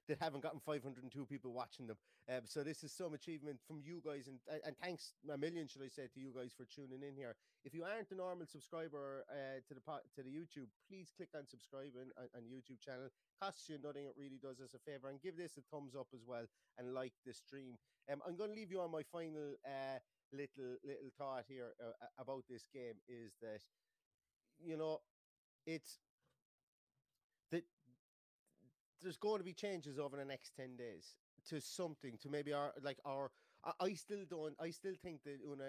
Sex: male